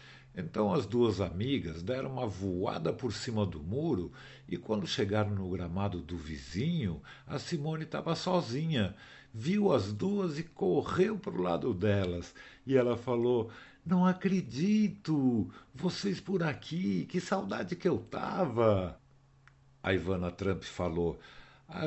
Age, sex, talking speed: 60-79, male, 135 wpm